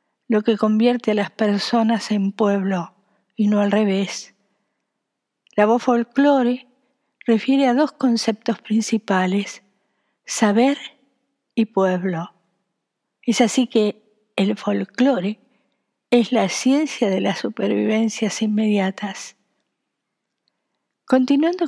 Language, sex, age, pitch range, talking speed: Spanish, female, 50-69, 210-260 Hz, 100 wpm